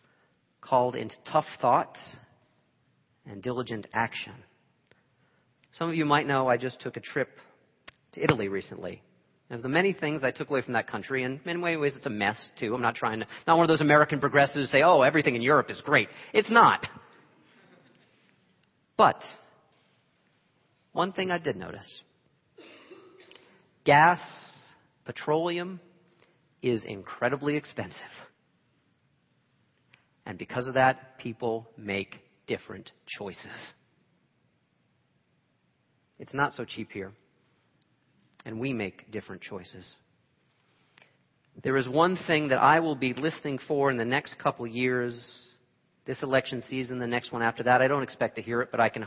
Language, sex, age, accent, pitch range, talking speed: English, male, 40-59, American, 120-155 Hz, 145 wpm